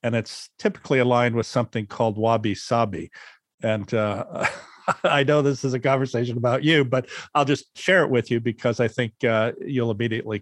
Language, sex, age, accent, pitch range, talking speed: English, male, 50-69, American, 110-130 Hz, 180 wpm